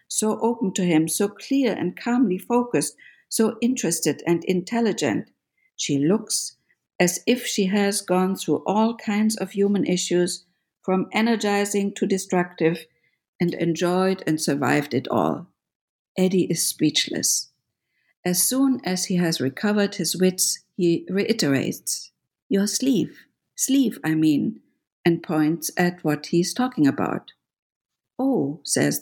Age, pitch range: 50-69, 165-220 Hz